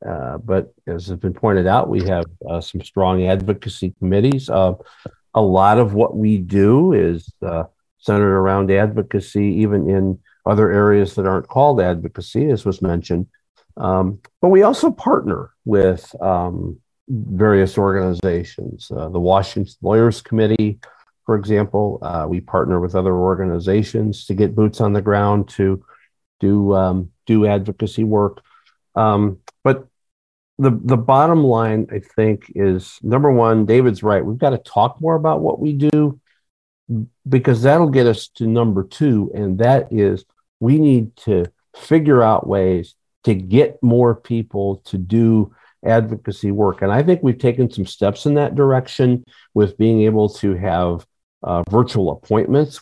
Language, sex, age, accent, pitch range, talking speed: English, male, 50-69, American, 95-120 Hz, 155 wpm